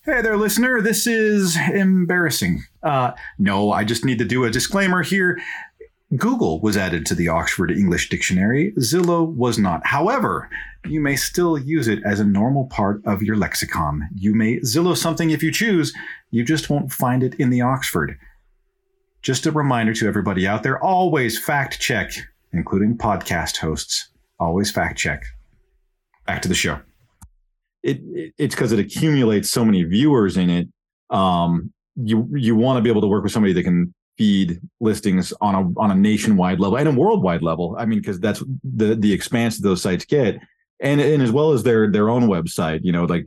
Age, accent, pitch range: 40-59, American, 95-150 Hz